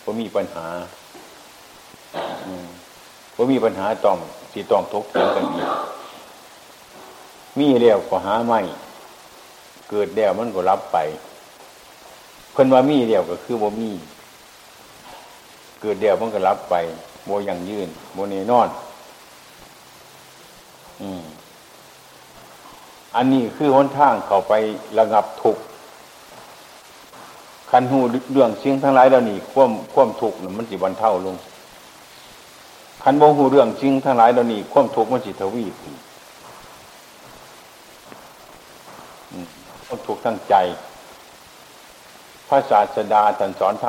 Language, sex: Chinese, male